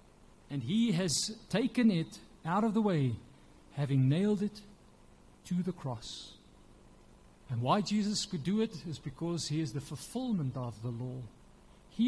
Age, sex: 50-69, male